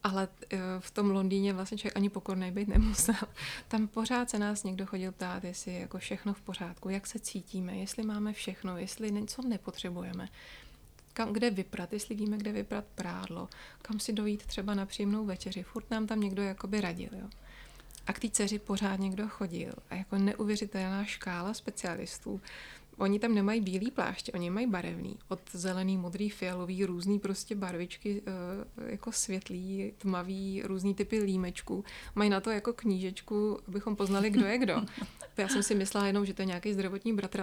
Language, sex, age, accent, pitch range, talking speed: Czech, female, 30-49, native, 190-215 Hz, 170 wpm